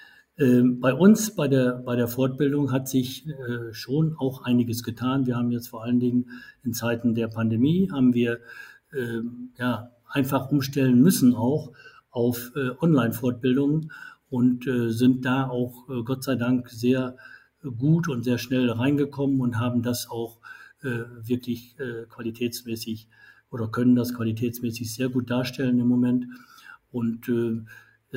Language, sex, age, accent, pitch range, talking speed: German, male, 50-69, German, 120-135 Hz, 145 wpm